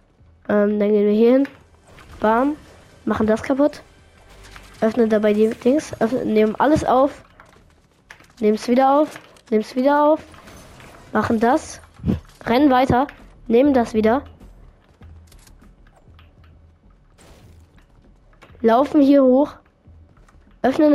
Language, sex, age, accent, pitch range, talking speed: Swedish, female, 20-39, German, 200-260 Hz, 105 wpm